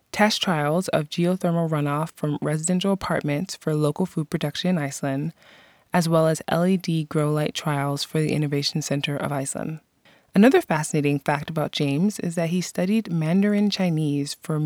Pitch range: 150-185 Hz